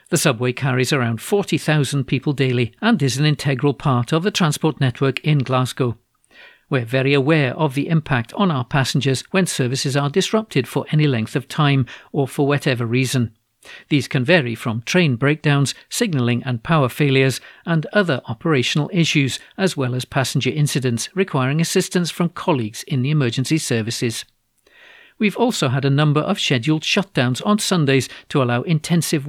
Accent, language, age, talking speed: British, English, 50-69, 165 wpm